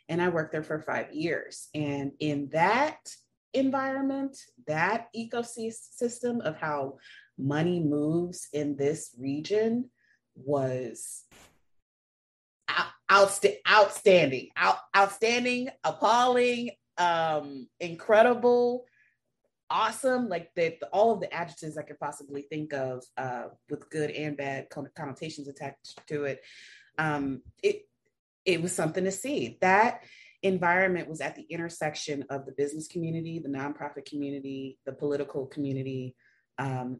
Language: English